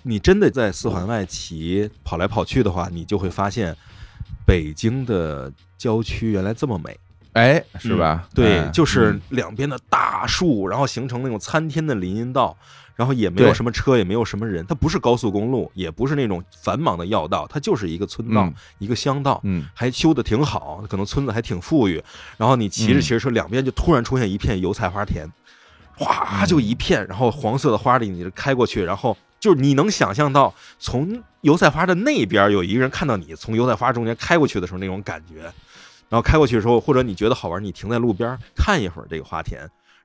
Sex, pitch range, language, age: male, 95-135 Hz, Chinese, 20-39